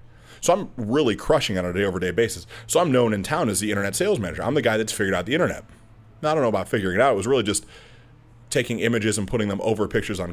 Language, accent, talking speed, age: English, American, 275 wpm, 30-49